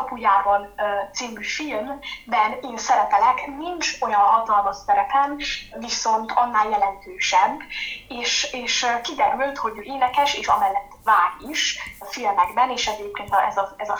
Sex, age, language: female, 10-29, Hungarian